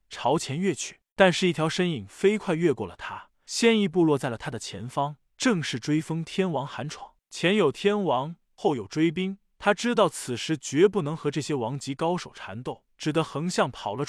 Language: Chinese